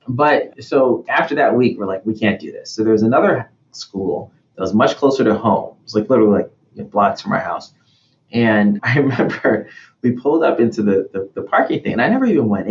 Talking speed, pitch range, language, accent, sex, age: 235 wpm, 105-120 Hz, English, American, male, 30-49